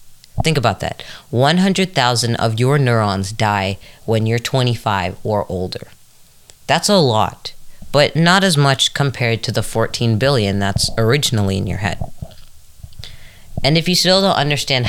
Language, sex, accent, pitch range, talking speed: English, female, American, 110-145 Hz, 145 wpm